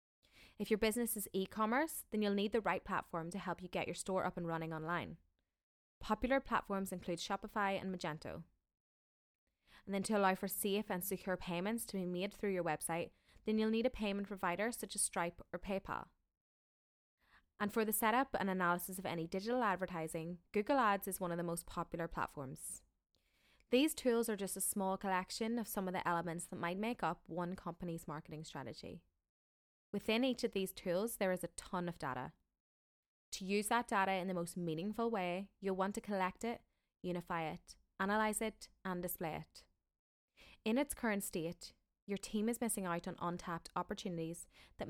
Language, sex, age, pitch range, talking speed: English, female, 20-39, 170-210 Hz, 185 wpm